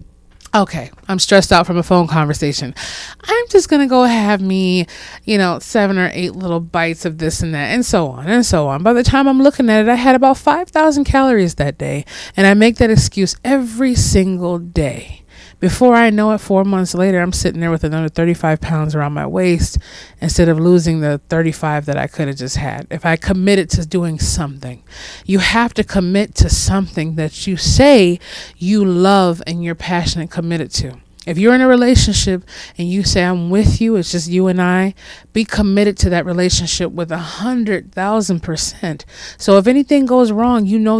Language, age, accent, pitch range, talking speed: English, 30-49, American, 165-220 Hz, 195 wpm